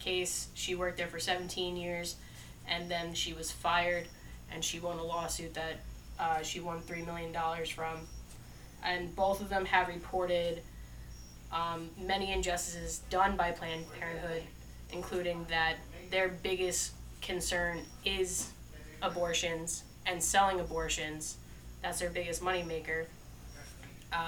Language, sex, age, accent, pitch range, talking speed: English, female, 10-29, American, 160-185 Hz, 130 wpm